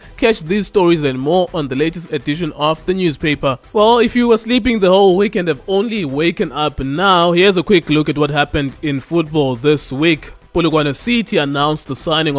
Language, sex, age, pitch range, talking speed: English, male, 20-39, 140-180 Hz, 200 wpm